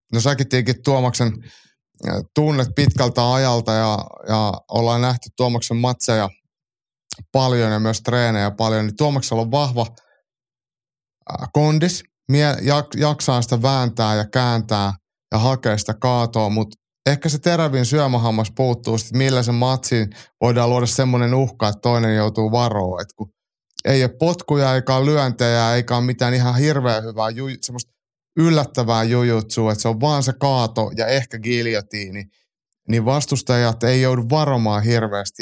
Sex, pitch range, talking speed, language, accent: male, 110-135 Hz, 135 wpm, Finnish, native